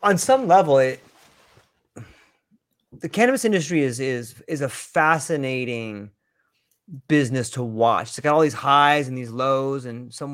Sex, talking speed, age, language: male, 145 wpm, 30-49, English